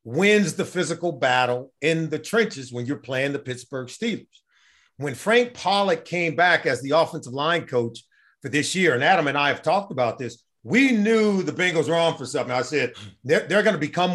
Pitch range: 145-210 Hz